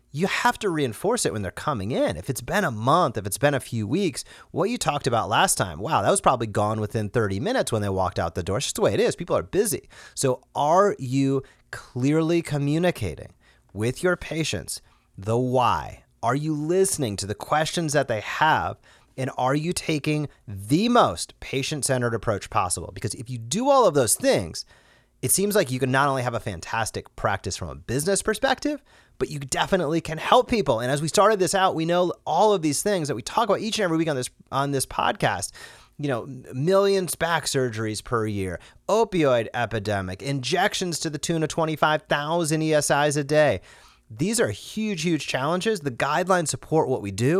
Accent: American